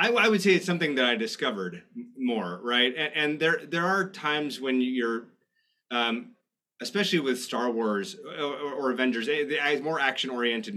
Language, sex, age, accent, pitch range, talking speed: English, male, 30-49, American, 115-155 Hz, 155 wpm